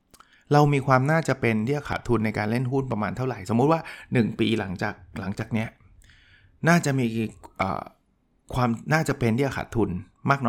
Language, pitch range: Thai, 105-135 Hz